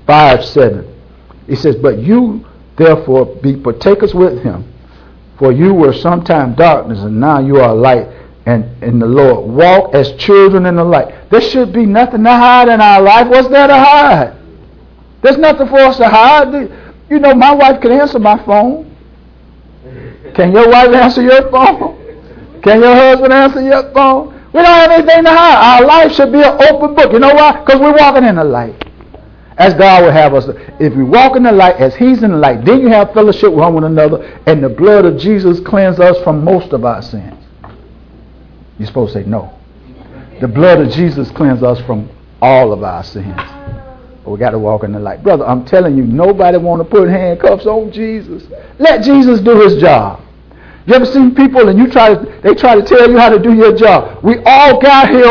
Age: 60-79